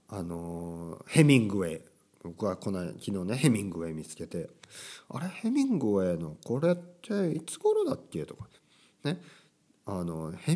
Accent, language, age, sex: native, Japanese, 50-69, male